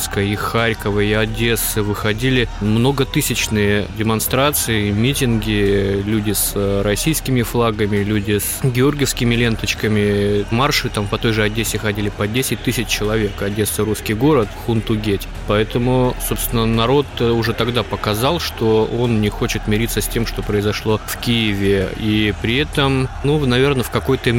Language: Russian